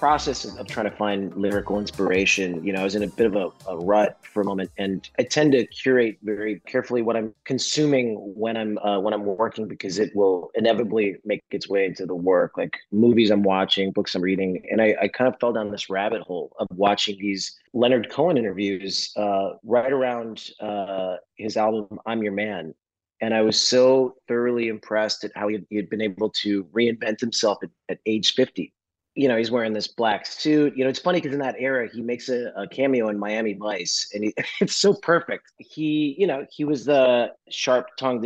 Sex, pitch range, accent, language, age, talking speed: male, 100-125 Hz, American, English, 30-49, 205 wpm